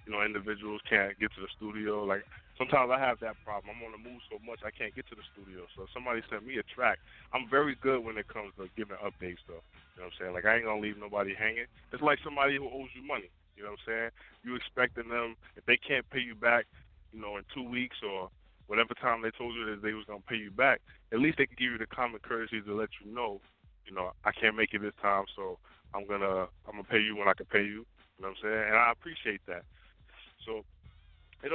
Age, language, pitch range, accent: 20-39, English, 100-115 Hz, American